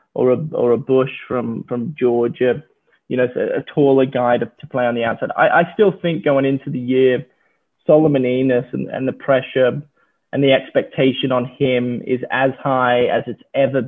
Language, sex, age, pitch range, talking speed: English, male, 20-39, 130-150 Hz, 190 wpm